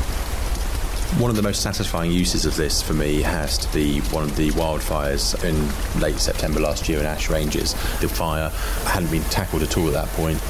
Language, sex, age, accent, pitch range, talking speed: English, male, 30-49, British, 80-90 Hz, 200 wpm